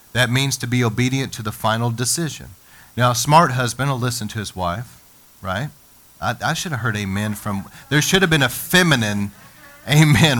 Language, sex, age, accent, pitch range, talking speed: English, male, 40-59, American, 95-125 Hz, 190 wpm